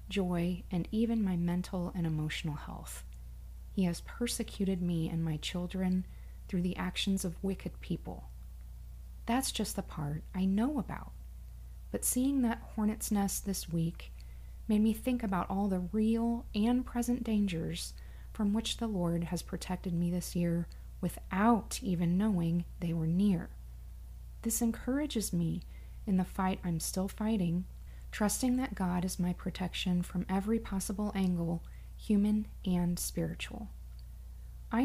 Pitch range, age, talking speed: 170-210 Hz, 30-49, 145 wpm